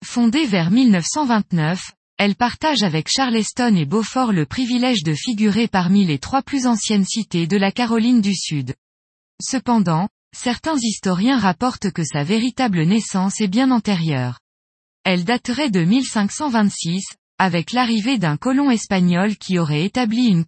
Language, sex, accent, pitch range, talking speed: French, female, French, 180-245 Hz, 140 wpm